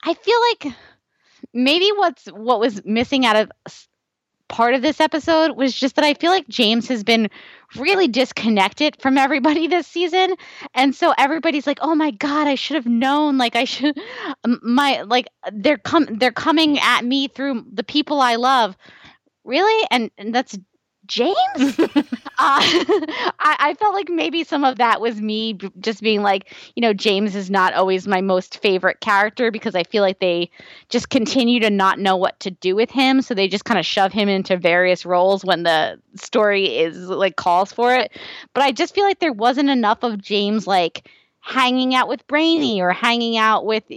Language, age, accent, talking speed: English, 20-39, American, 185 wpm